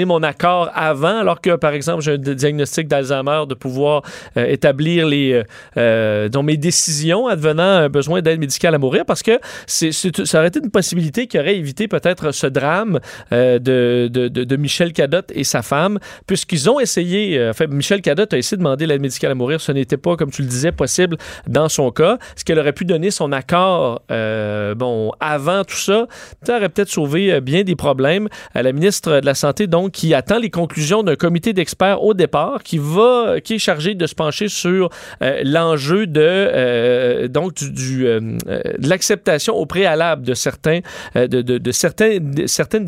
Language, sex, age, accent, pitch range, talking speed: French, male, 40-59, Canadian, 140-185 Hz, 200 wpm